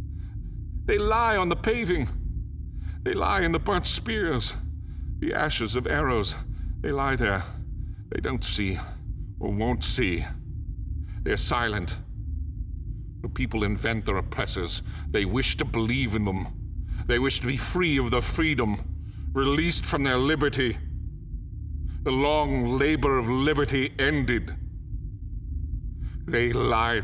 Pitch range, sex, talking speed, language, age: 85-125 Hz, male, 125 wpm, English, 50-69